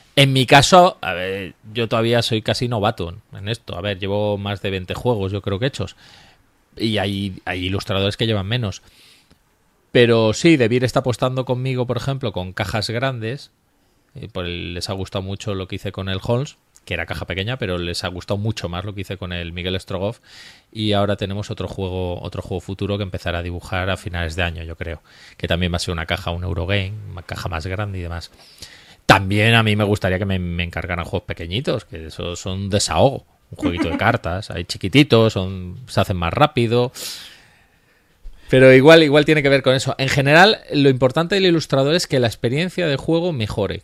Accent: Spanish